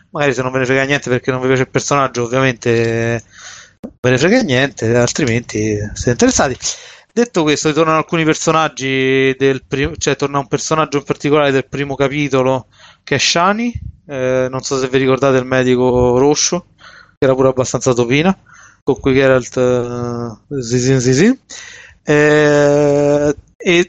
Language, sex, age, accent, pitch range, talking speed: Italian, male, 20-39, native, 130-145 Hz, 155 wpm